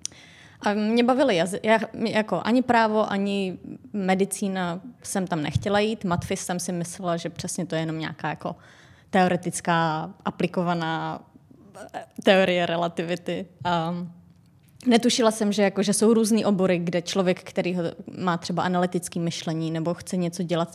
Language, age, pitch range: Czech, 20-39, 165-200 Hz